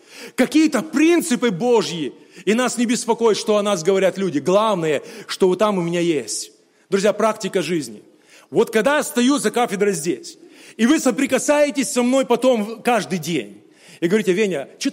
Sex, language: male, Russian